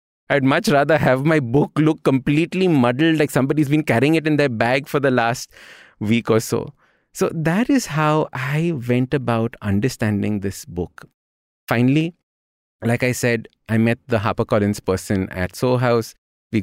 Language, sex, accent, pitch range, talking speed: English, male, Indian, 105-135 Hz, 165 wpm